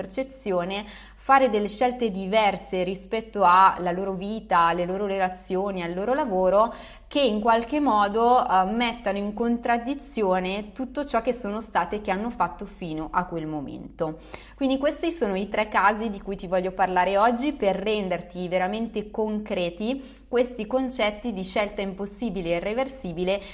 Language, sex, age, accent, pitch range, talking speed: Italian, female, 20-39, native, 180-225 Hz, 150 wpm